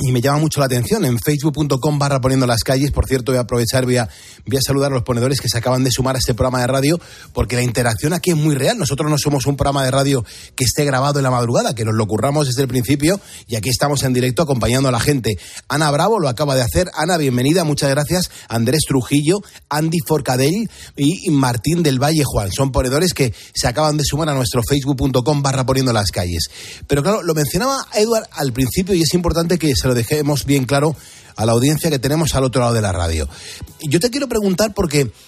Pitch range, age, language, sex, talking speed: 130-175 Hz, 30-49, Spanish, male, 230 wpm